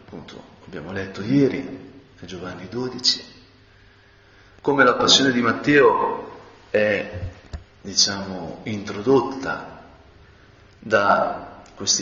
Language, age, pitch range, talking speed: Italian, 40-59, 100-120 Hz, 80 wpm